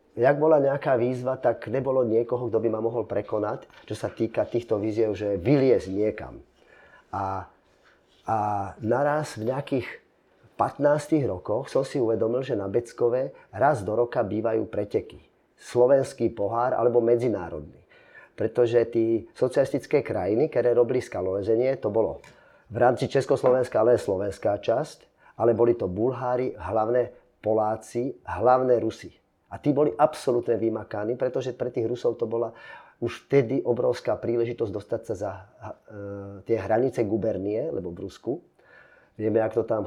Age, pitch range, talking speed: 30-49, 115-140 Hz, 140 wpm